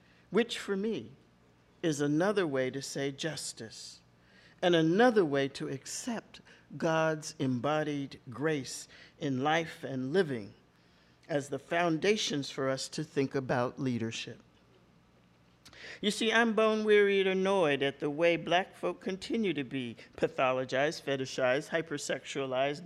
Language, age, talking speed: English, 50-69, 125 wpm